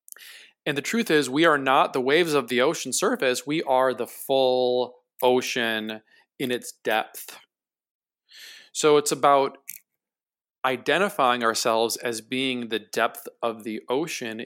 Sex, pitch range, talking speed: male, 110-140 Hz, 135 wpm